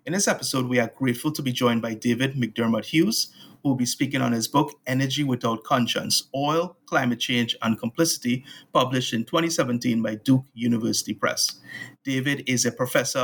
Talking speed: 175 wpm